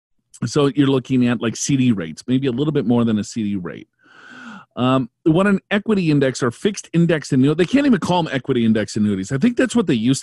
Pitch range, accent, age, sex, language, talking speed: 140-200 Hz, American, 40-59, male, English, 230 wpm